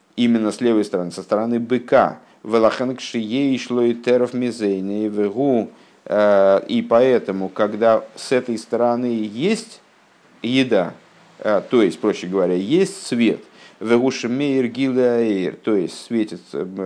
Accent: native